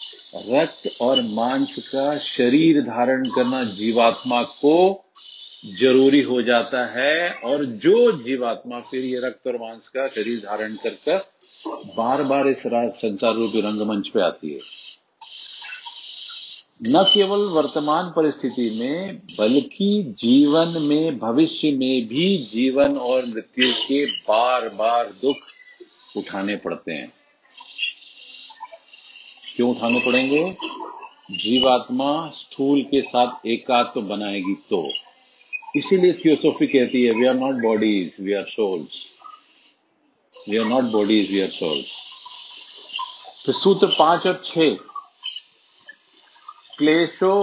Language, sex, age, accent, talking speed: Hindi, male, 50-69, native, 115 wpm